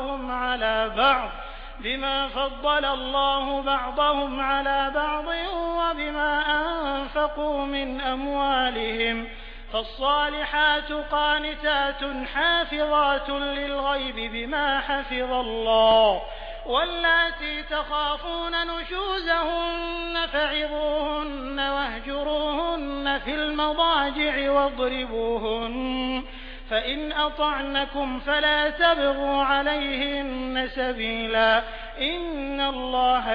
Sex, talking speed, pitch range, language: male, 60 wpm, 255-300 Hz, Hindi